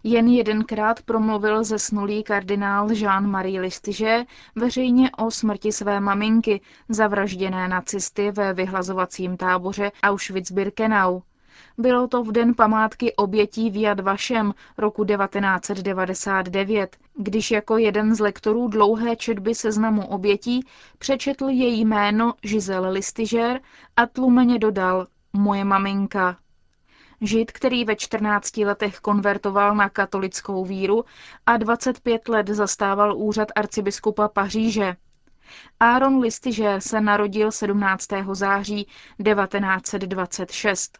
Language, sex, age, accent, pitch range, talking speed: Czech, female, 20-39, native, 200-225 Hz, 100 wpm